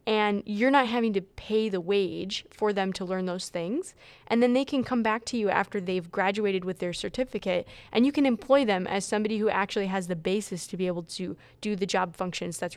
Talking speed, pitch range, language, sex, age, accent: 230 wpm, 185-225 Hz, English, female, 20-39, American